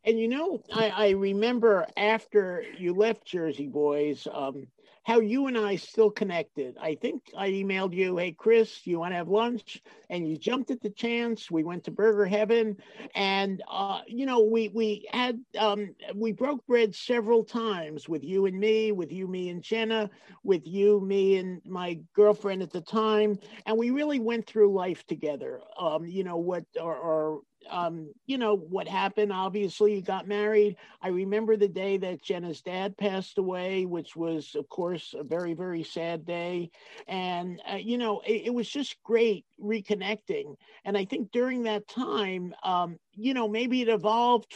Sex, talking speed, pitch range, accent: male, 180 wpm, 180-220 Hz, American